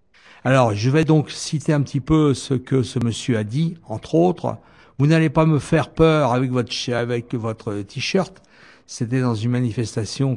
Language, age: French, 60-79